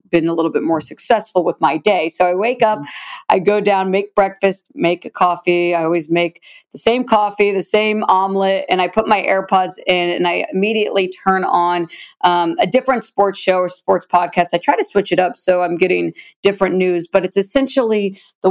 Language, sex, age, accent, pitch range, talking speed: English, female, 40-59, American, 175-200 Hz, 210 wpm